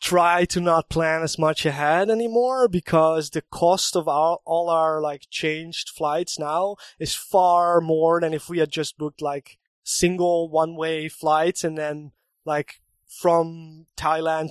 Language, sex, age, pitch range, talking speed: English, male, 20-39, 155-175 Hz, 160 wpm